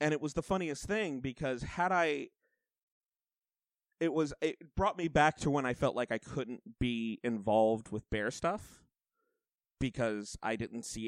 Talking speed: 170 wpm